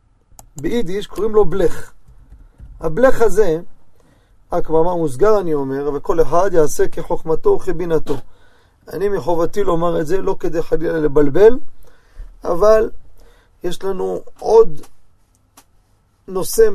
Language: Hebrew